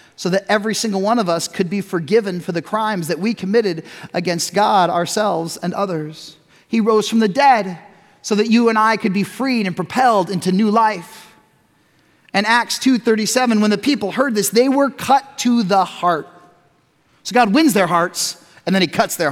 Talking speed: 195 wpm